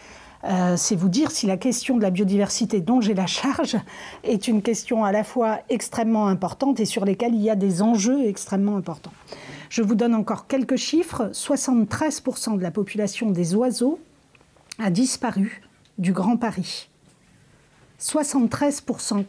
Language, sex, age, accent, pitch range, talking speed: French, female, 40-59, French, 200-245 Hz, 155 wpm